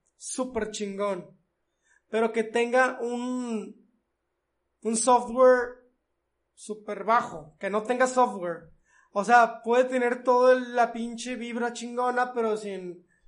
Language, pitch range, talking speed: Spanish, 205-255 Hz, 115 wpm